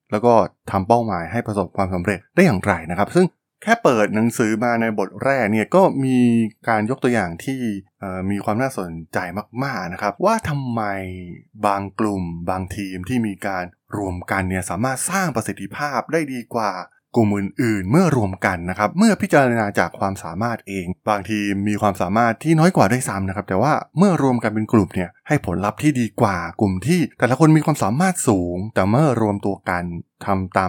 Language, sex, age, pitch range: Thai, male, 20-39, 100-125 Hz